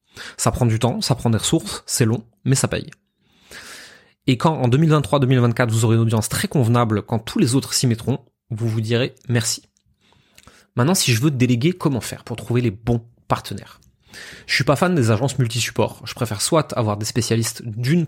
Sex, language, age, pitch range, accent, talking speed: male, French, 20-39, 115-140 Hz, French, 200 wpm